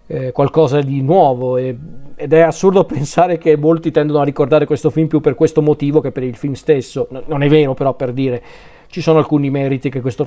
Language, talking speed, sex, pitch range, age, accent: Italian, 205 wpm, male, 140-165 Hz, 40-59, native